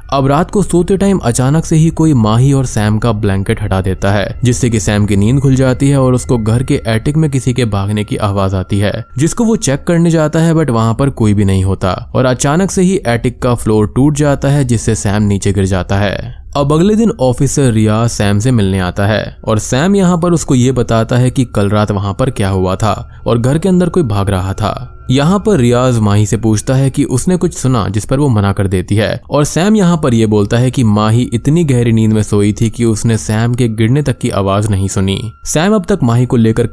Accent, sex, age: native, male, 20-39